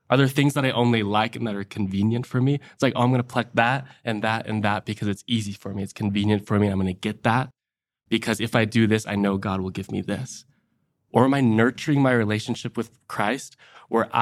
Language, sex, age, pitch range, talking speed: English, male, 20-39, 100-120 Hz, 255 wpm